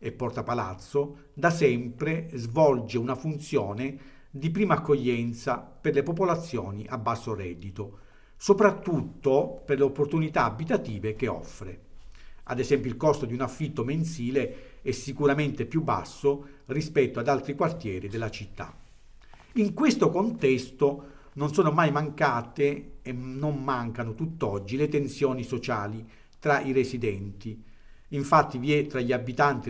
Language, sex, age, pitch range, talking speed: Italian, male, 50-69, 120-160 Hz, 130 wpm